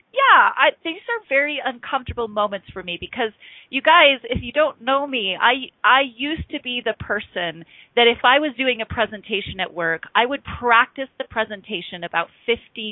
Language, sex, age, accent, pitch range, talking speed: English, female, 30-49, American, 185-250 Hz, 185 wpm